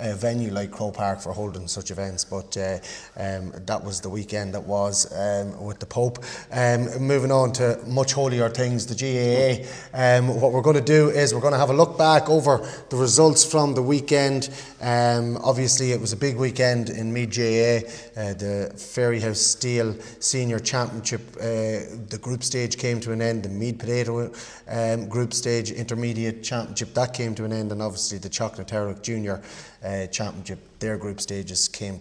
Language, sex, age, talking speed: English, male, 30-49, 190 wpm